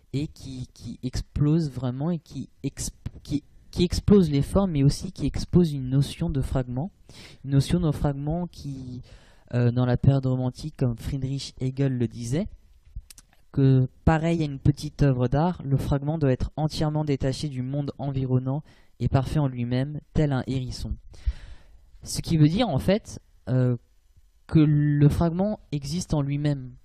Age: 20-39